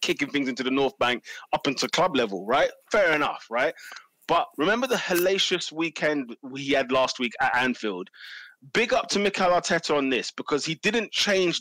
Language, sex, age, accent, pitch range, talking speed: English, male, 20-39, British, 130-185 Hz, 190 wpm